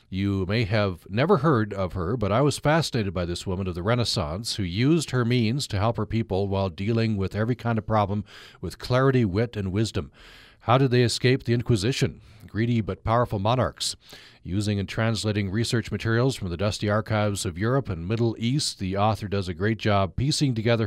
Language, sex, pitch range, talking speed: English, male, 95-120 Hz, 200 wpm